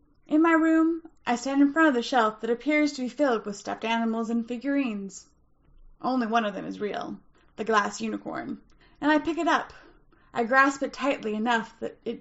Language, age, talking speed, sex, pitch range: English, 20-39, 200 wpm, female, 220-295 Hz